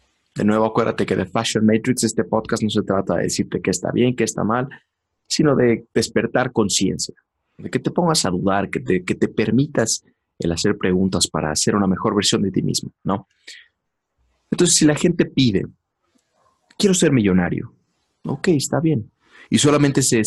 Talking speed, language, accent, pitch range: 180 wpm, English, Mexican, 95-130 Hz